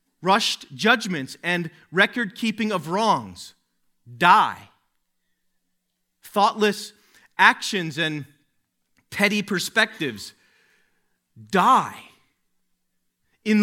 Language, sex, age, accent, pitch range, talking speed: English, male, 40-59, American, 185-240 Hz, 60 wpm